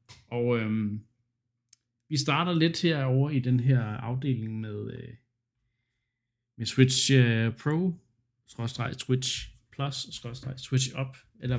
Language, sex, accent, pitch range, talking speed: Danish, male, native, 115-130 Hz, 110 wpm